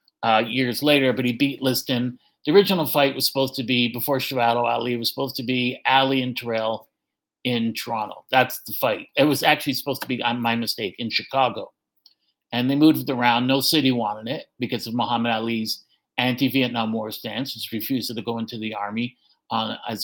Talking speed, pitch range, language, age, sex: 195 wpm, 120-140 Hz, English, 50-69, male